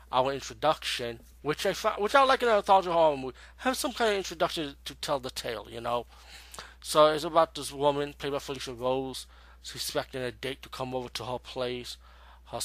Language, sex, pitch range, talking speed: English, male, 115-145 Hz, 205 wpm